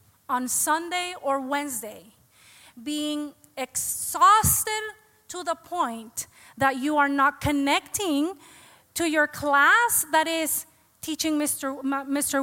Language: English